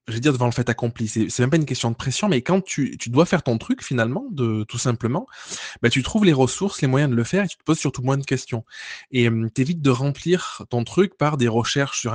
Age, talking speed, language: 20-39, 265 wpm, French